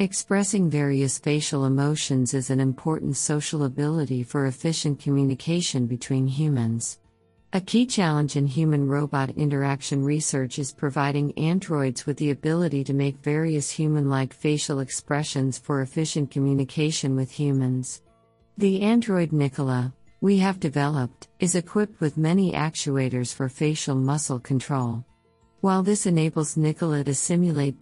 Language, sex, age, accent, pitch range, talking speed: English, female, 50-69, American, 130-155 Hz, 125 wpm